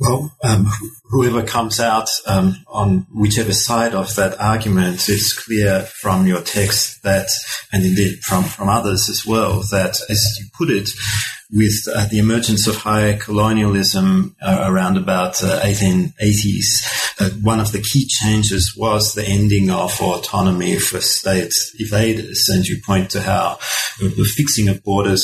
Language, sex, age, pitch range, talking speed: English, male, 30-49, 100-115 Hz, 155 wpm